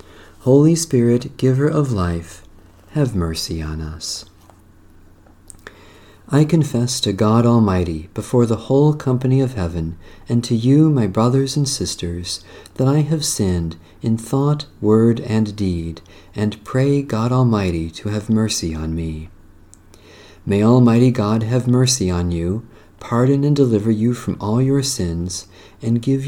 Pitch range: 90-130 Hz